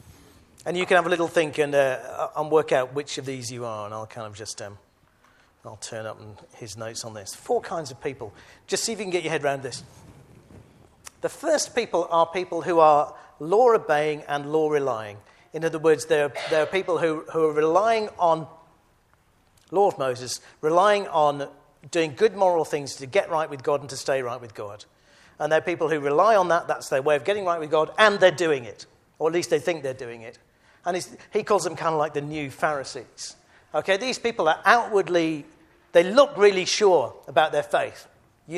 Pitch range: 125-170 Hz